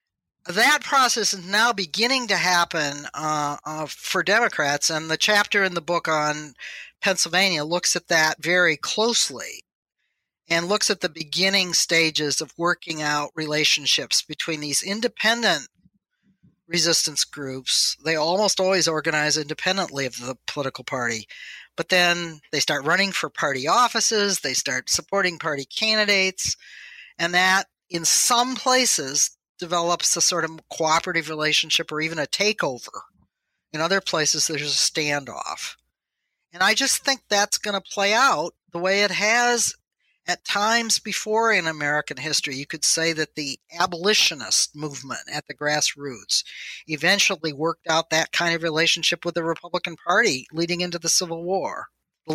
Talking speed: 145 wpm